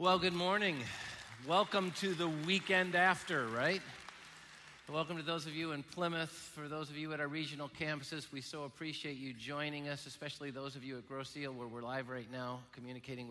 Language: English